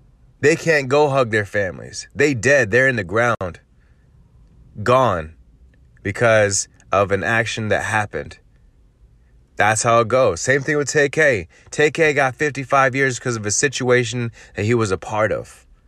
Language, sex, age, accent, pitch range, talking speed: English, male, 30-49, American, 115-145 Hz, 155 wpm